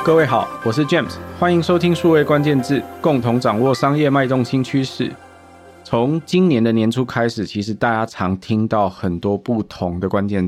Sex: male